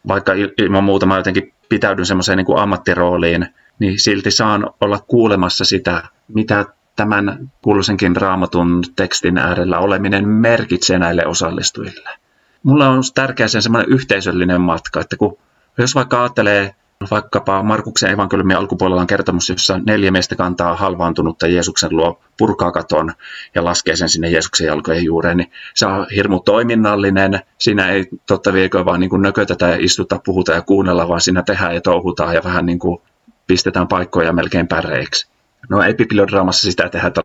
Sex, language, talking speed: male, Finnish, 150 wpm